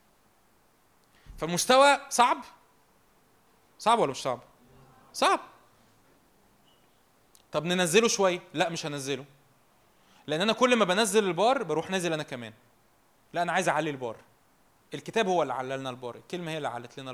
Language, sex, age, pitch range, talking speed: Arabic, male, 20-39, 135-165 Hz, 135 wpm